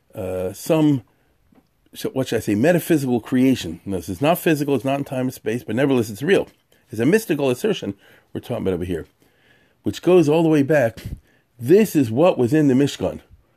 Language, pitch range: English, 110-150 Hz